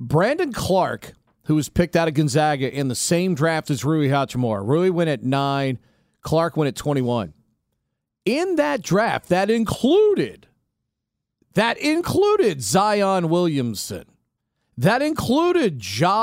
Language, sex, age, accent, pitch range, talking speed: English, male, 40-59, American, 130-190 Hz, 130 wpm